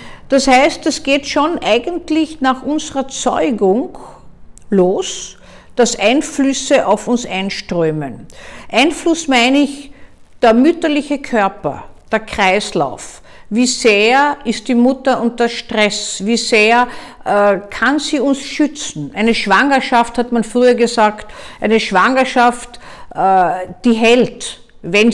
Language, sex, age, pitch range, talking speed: German, female, 50-69, 200-270 Hz, 115 wpm